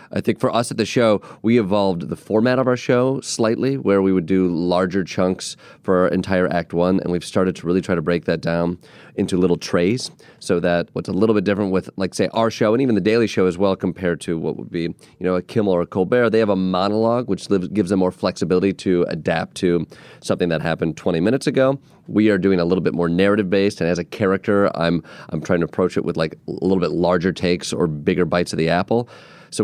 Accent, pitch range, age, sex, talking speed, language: American, 90-105 Hz, 30-49, male, 245 wpm, English